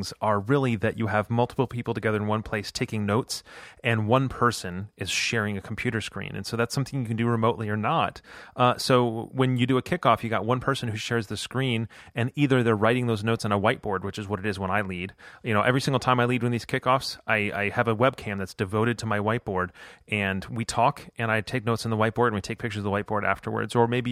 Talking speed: 260 wpm